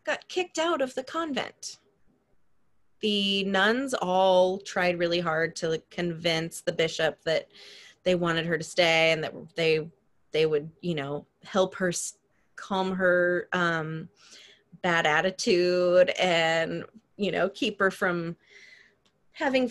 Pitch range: 165-190 Hz